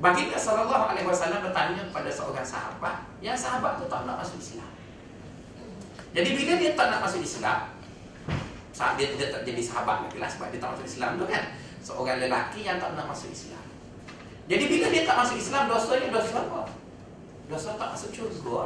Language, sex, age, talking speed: Malay, male, 30-49, 175 wpm